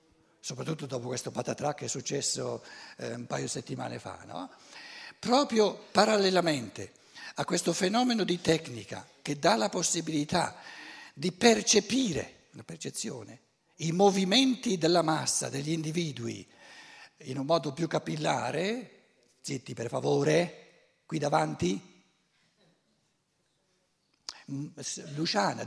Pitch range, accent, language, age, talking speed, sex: 145-195 Hz, native, Italian, 60-79, 105 wpm, male